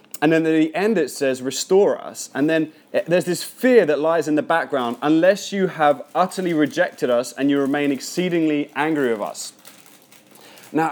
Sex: male